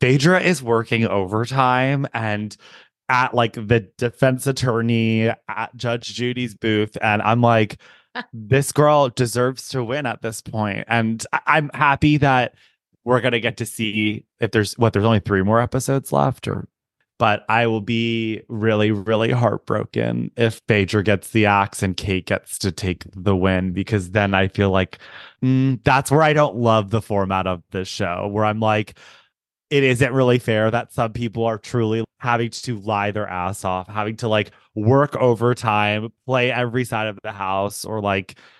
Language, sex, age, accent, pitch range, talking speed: English, male, 20-39, American, 105-125 Hz, 175 wpm